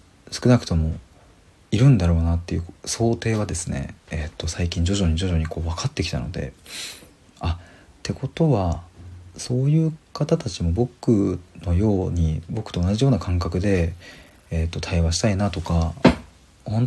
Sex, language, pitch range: male, Japanese, 85-105 Hz